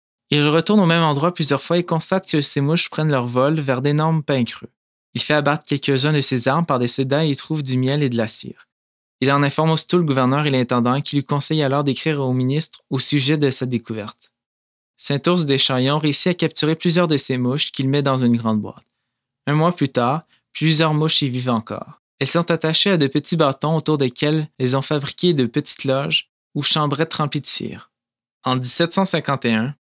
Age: 20-39